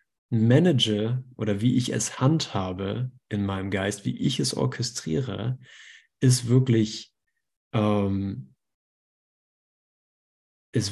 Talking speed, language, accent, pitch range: 95 wpm, German, German, 105-130 Hz